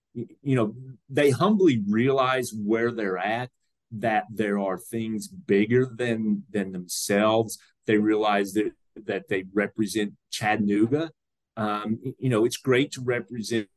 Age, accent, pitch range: 30-49, American, 105-135 Hz